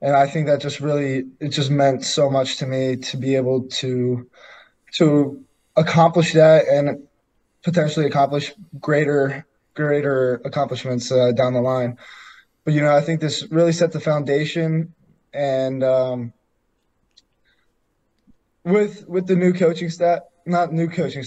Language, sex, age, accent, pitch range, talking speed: English, male, 20-39, American, 135-165 Hz, 145 wpm